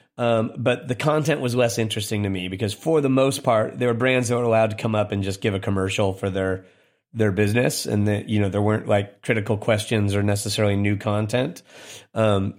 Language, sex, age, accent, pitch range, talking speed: English, male, 30-49, American, 105-120 Hz, 220 wpm